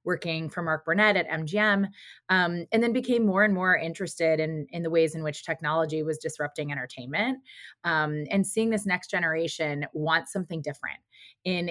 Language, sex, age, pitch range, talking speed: English, female, 20-39, 160-195 Hz, 175 wpm